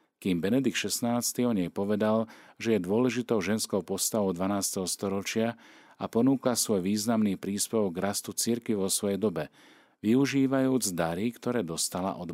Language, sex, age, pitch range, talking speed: Slovak, male, 40-59, 85-110 Hz, 140 wpm